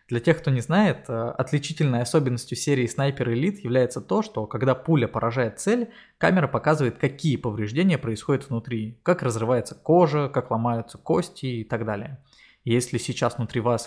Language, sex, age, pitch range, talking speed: Russian, male, 20-39, 115-145 Hz, 155 wpm